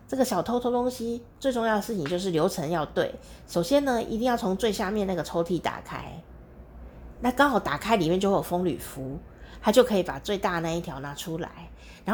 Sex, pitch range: female, 170-235 Hz